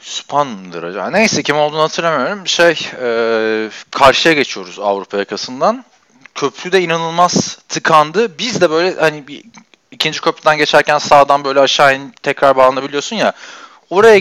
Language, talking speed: Turkish, 130 wpm